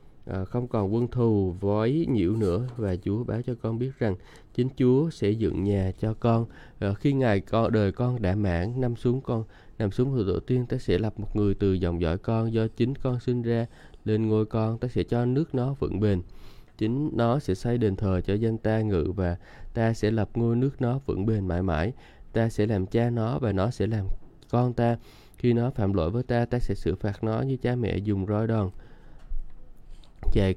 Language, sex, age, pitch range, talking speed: Vietnamese, male, 20-39, 100-120 Hz, 220 wpm